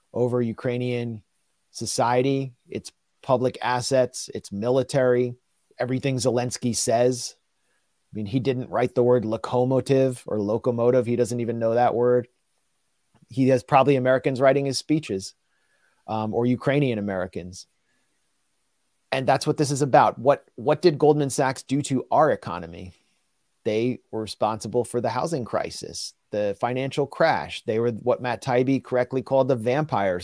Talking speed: 145 wpm